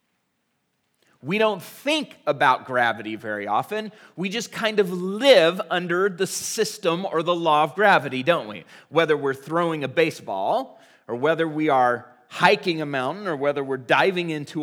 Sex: male